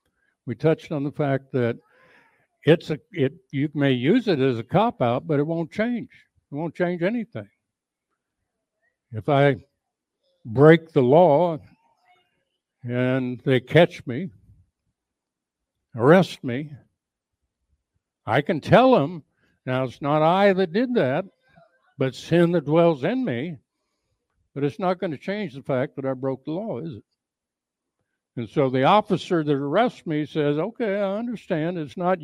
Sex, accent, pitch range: male, American, 130-175 Hz